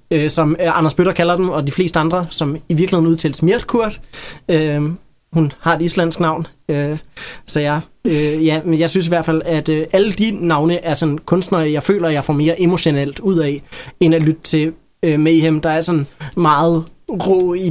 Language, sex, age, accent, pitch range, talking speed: Danish, male, 20-39, native, 145-165 Hz, 210 wpm